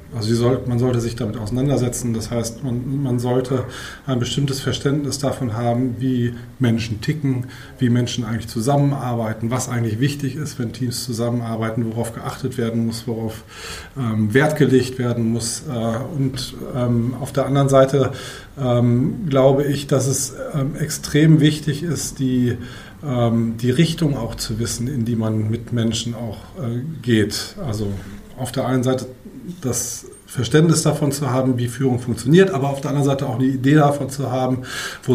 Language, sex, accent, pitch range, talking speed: German, male, German, 120-140 Hz, 150 wpm